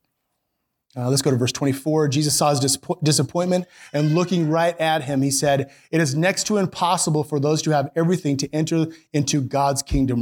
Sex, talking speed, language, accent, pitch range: male, 190 wpm, English, American, 140-175 Hz